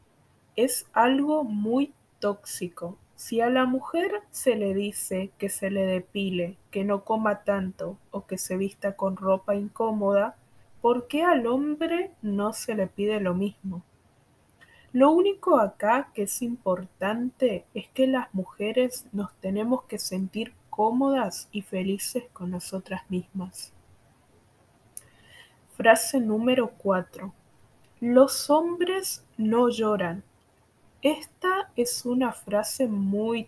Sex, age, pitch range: female, 20-39, 195-255 Hz